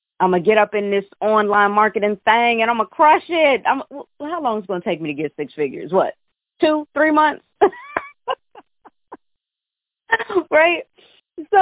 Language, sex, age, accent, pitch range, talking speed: English, female, 30-49, American, 180-245 Hz, 185 wpm